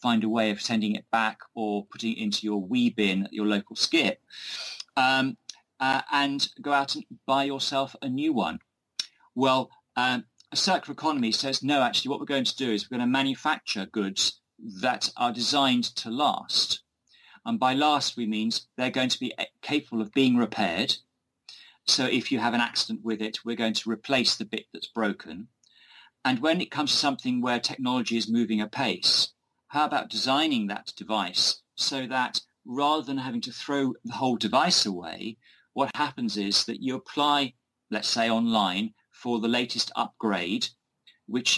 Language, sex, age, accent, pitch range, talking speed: English, male, 40-59, British, 110-140 Hz, 175 wpm